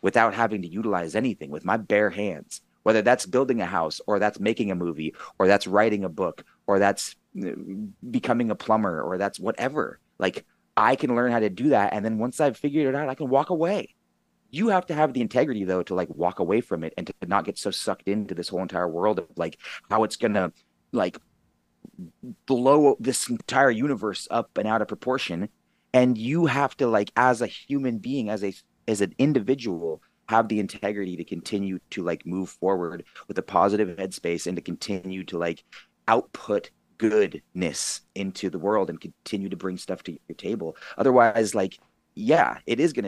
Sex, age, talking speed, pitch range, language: male, 30-49, 200 wpm, 90-115 Hz, English